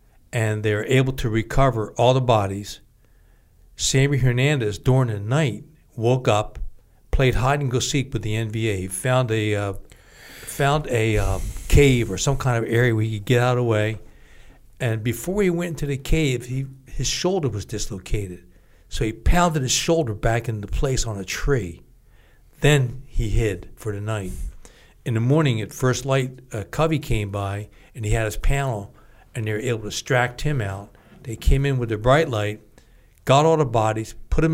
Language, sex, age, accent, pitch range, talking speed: English, male, 60-79, American, 105-130 Hz, 185 wpm